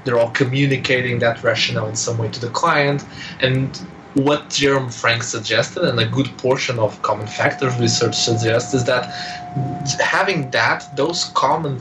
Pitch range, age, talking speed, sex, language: 115-145 Hz, 20-39, 160 wpm, male, English